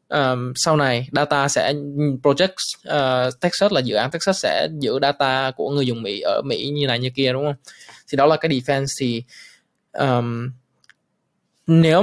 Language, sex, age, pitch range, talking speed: Vietnamese, male, 20-39, 130-155 Hz, 175 wpm